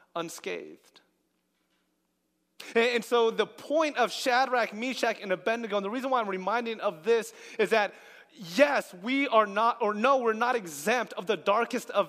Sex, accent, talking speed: male, American, 165 wpm